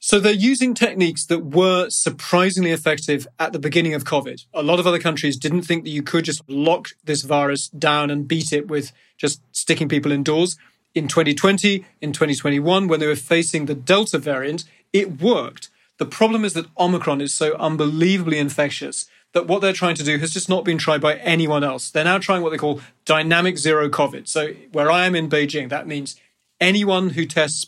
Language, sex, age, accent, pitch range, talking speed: English, male, 30-49, British, 150-180 Hz, 200 wpm